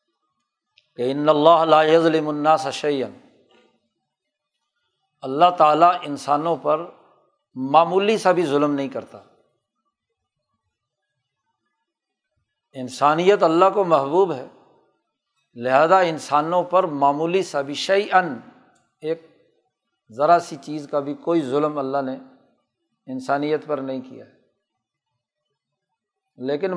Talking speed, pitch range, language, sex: 100 wpm, 140-180 Hz, Urdu, male